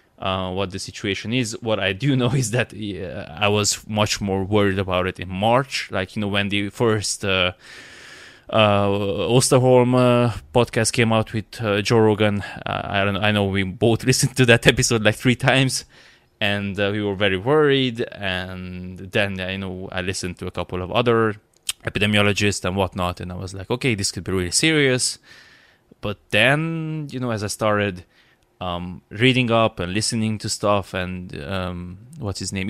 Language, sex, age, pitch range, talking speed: English, male, 20-39, 95-115 Hz, 185 wpm